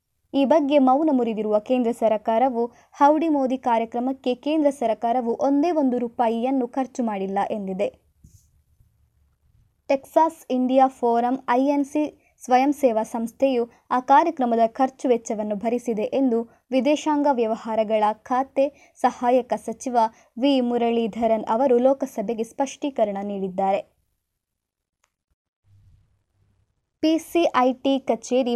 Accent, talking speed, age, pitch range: native, 90 wpm, 20-39, 220-265 Hz